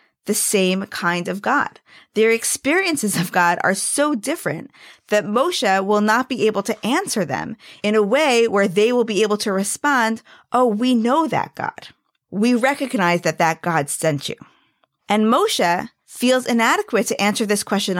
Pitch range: 195-255 Hz